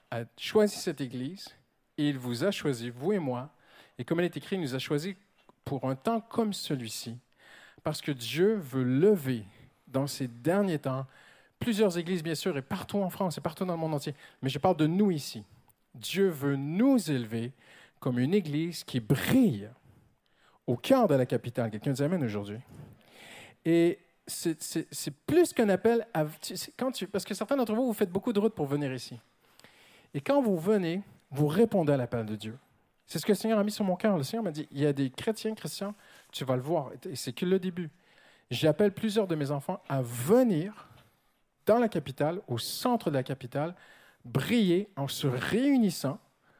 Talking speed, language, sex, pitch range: 200 wpm, French, male, 130-200 Hz